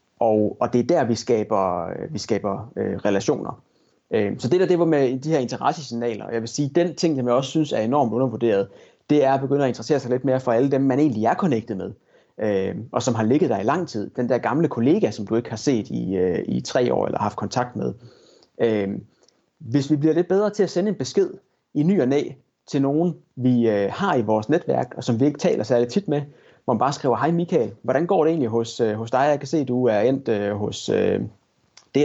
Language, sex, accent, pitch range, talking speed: Danish, male, native, 115-155 Hz, 245 wpm